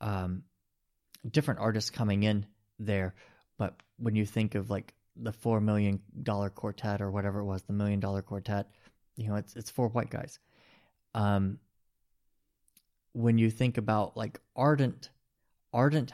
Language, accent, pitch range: English, American, 105-120 Hz